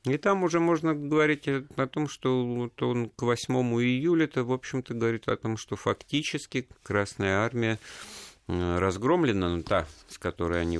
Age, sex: 50-69, male